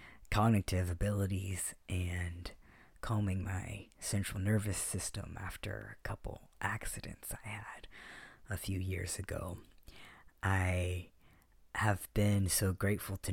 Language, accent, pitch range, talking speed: English, American, 95-105 Hz, 110 wpm